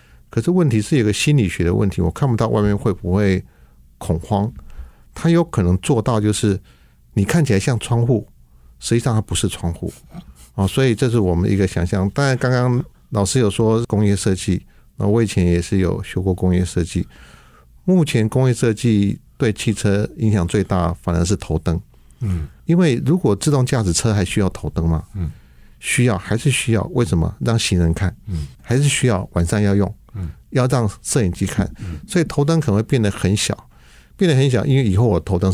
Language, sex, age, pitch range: Chinese, male, 50-69, 90-120 Hz